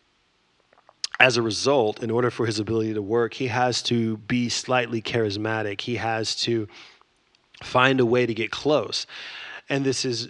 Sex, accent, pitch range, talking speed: male, American, 110-130 Hz, 165 wpm